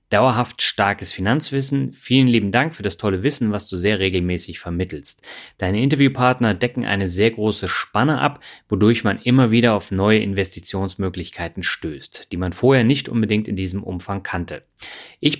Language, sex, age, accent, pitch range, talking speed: German, male, 30-49, German, 100-120 Hz, 160 wpm